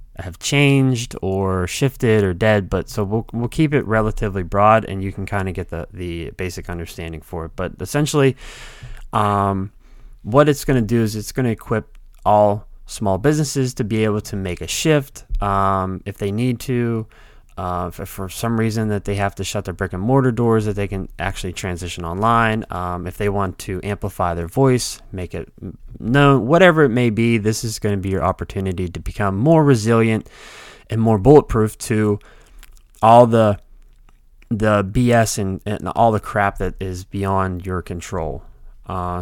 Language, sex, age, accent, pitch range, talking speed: English, male, 20-39, American, 90-115 Hz, 180 wpm